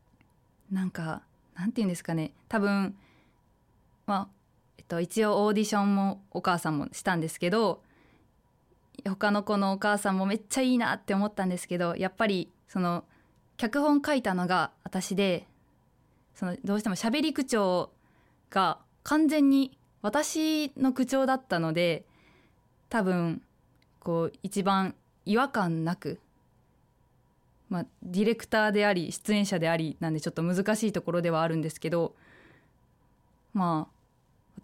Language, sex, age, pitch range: Japanese, female, 20-39, 170-215 Hz